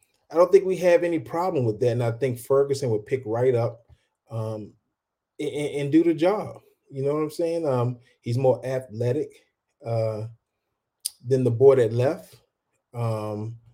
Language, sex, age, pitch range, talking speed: English, male, 30-49, 115-140 Hz, 170 wpm